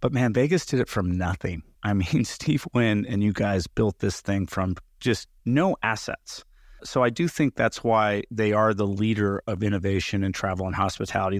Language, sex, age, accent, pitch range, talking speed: English, male, 30-49, American, 95-110 Hz, 195 wpm